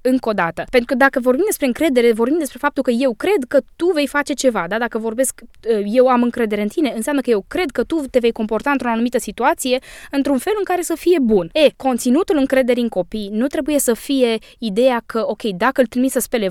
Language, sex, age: Romanian, female, 20-39